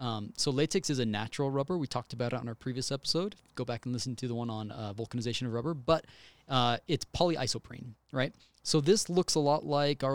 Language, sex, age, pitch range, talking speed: English, male, 20-39, 120-150 Hz, 230 wpm